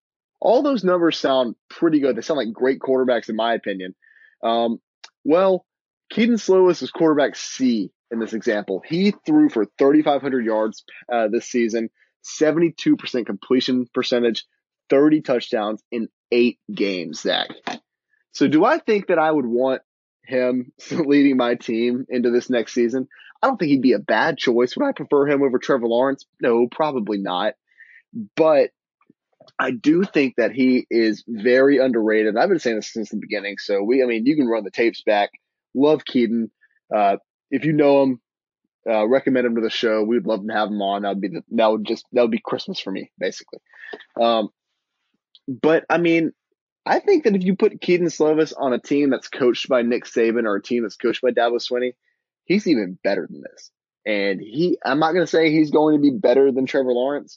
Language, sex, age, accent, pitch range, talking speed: English, male, 20-39, American, 115-165 Hz, 190 wpm